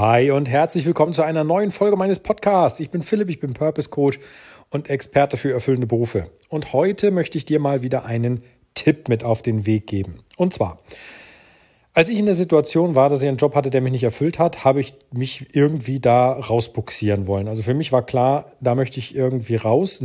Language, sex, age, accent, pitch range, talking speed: German, male, 40-59, German, 115-150 Hz, 210 wpm